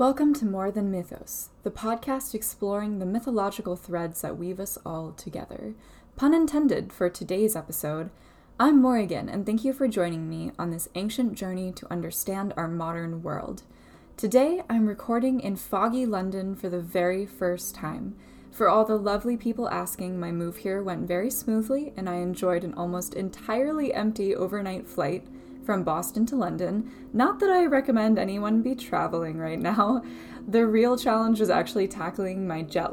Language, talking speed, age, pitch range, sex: English, 165 wpm, 10-29, 175-250 Hz, female